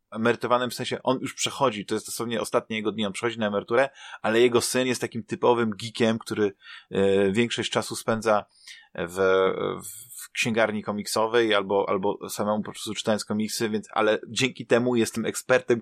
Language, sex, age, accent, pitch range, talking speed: Polish, male, 20-39, native, 105-120 Hz, 175 wpm